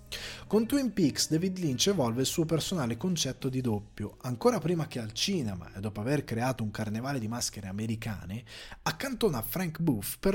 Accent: native